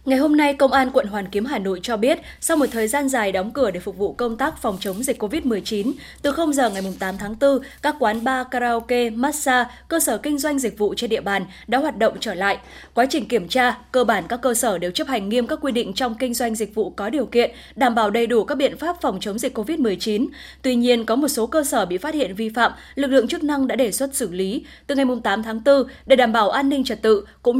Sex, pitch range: female, 220-270 Hz